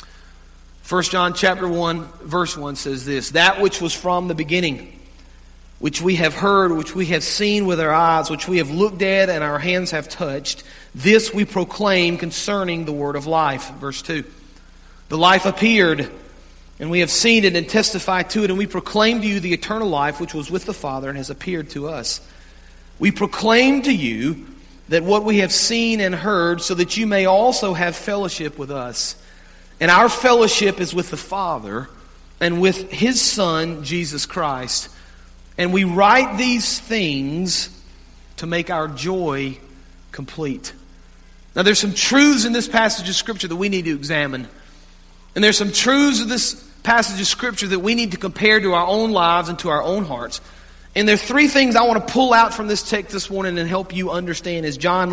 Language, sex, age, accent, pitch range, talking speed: English, male, 40-59, American, 150-205 Hz, 190 wpm